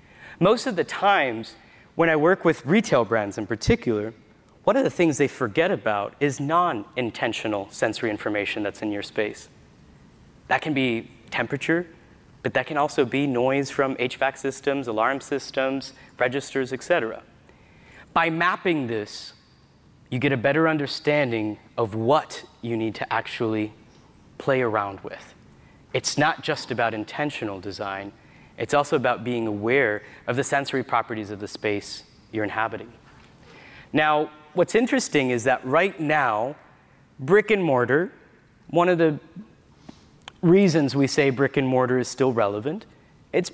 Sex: male